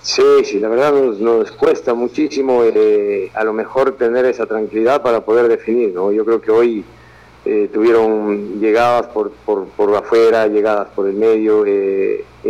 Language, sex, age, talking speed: Spanish, male, 50-69, 170 wpm